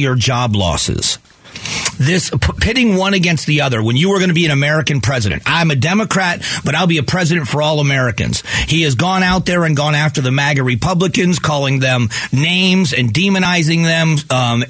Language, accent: English, American